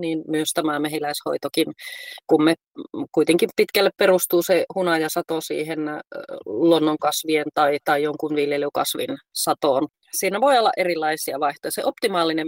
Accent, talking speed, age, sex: native, 115 wpm, 30-49, female